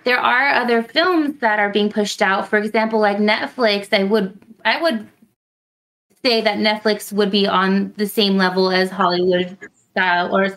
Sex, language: female, English